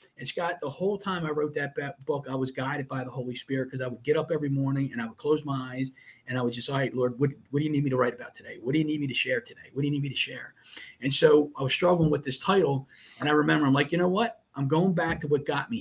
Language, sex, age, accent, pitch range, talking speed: English, male, 40-59, American, 130-165 Hz, 320 wpm